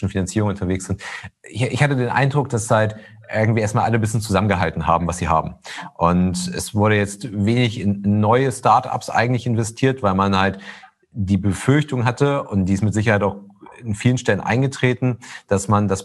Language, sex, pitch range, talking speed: German, male, 95-115 Hz, 185 wpm